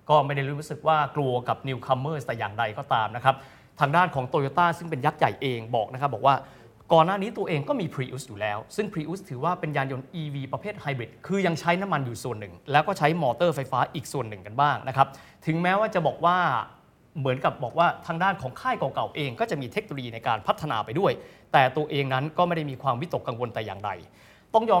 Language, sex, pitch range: Thai, male, 130-165 Hz